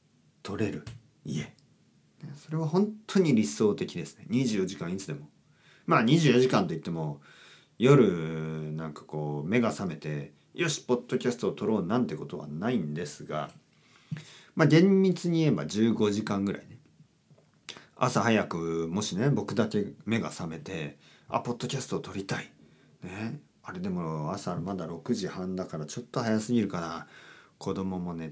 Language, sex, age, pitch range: Japanese, male, 40-59, 80-130 Hz